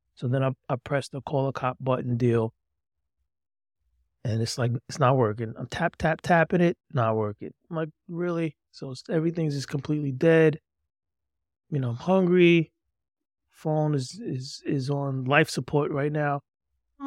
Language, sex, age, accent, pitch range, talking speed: English, male, 30-49, American, 95-150 Hz, 165 wpm